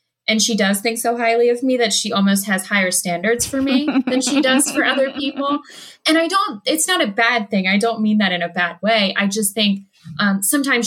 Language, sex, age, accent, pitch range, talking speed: English, female, 20-39, American, 190-235 Hz, 235 wpm